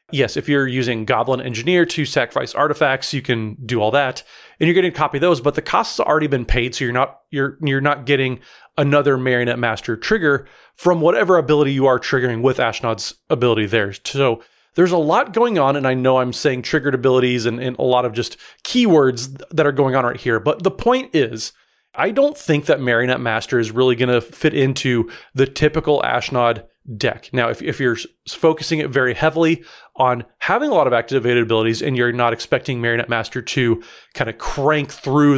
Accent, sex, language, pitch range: American, male, English, 125-155 Hz